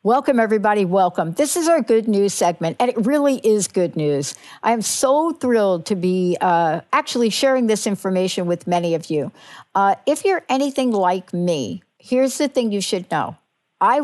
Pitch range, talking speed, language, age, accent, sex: 180-245 Hz, 185 wpm, English, 60-79, American, female